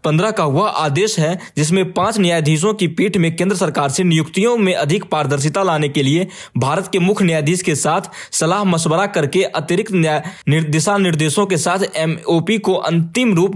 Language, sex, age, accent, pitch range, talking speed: English, male, 20-39, Indian, 155-195 Hz, 175 wpm